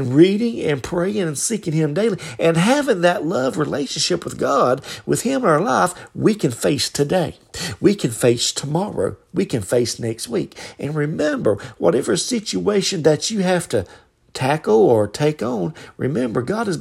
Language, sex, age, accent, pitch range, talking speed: English, male, 50-69, American, 125-185 Hz, 170 wpm